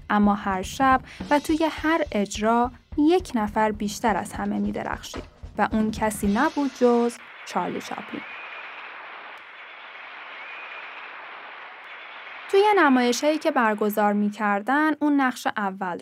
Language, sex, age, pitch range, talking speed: Persian, female, 10-29, 205-280 Hz, 110 wpm